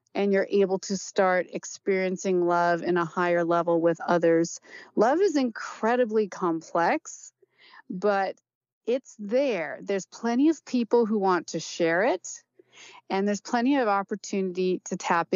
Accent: American